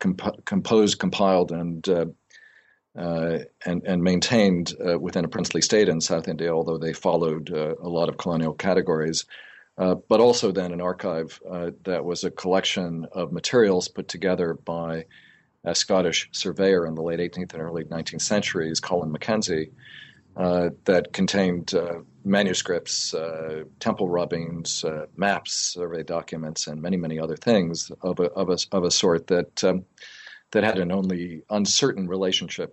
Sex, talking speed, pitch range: male, 160 wpm, 80-95 Hz